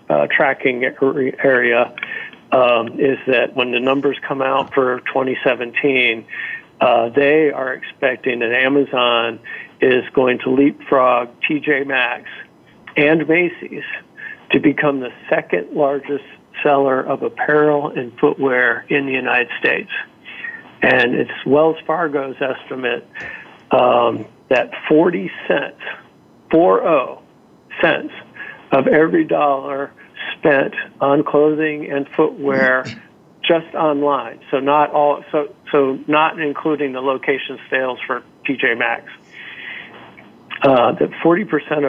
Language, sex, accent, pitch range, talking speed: English, male, American, 130-150 Hz, 110 wpm